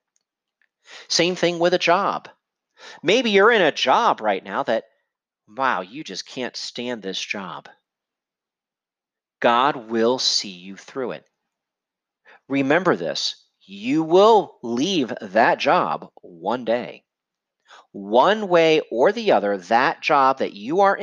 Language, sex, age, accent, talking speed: English, male, 40-59, American, 130 wpm